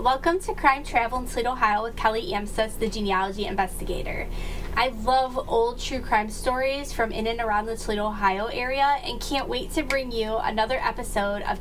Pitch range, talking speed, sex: 215-280 Hz, 185 wpm, female